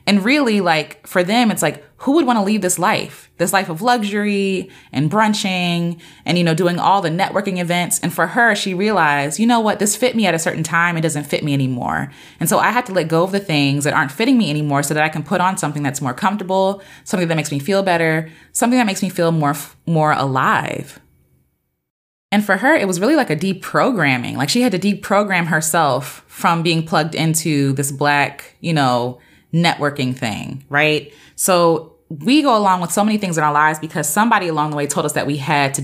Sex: female